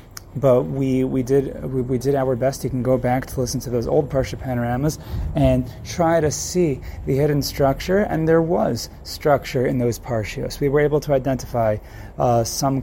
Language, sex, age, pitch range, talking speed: English, male, 30-49, 120-145 Hz, 190 wpm